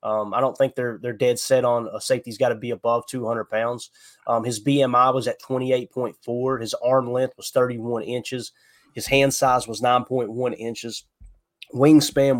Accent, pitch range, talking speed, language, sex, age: American, 115-135 Hz, 180 wpm, English, male, 20-39